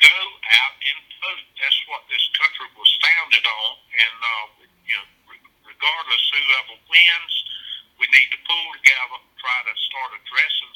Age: 50-69